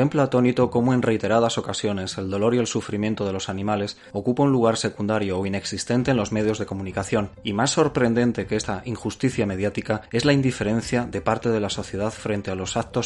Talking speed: 200 wpm